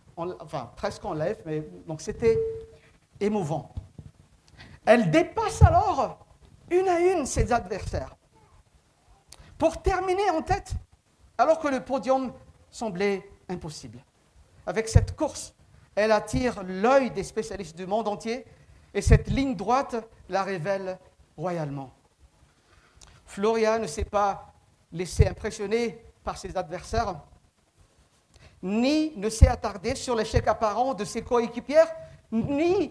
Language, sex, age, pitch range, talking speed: French, male, 50-69, 185-270 Hz, 115 wpm